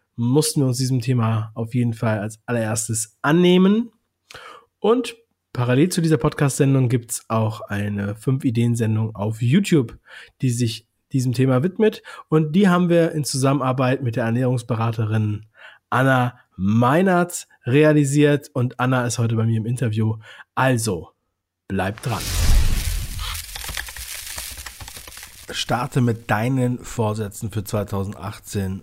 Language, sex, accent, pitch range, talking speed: German, male, German, 105-125 Hz, 120 wpm